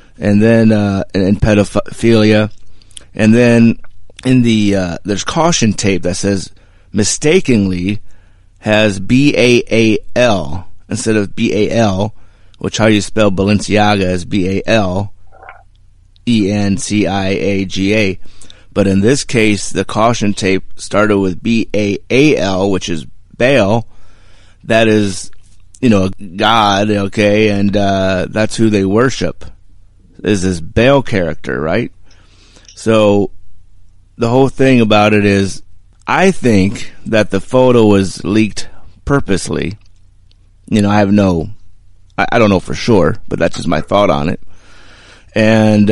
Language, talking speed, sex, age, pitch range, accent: English, 140 wpm, male, 30-49, 95-110 Hz, American